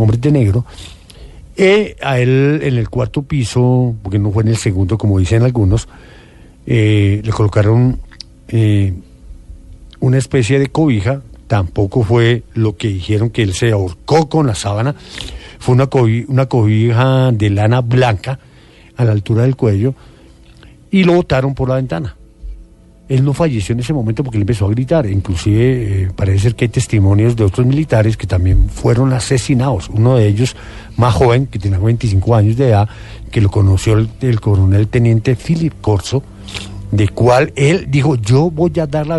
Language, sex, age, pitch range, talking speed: English, male, 50-69, 105-135 Hz, 175 wpm